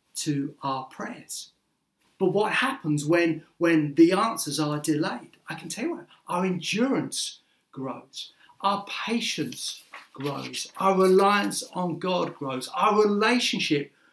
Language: English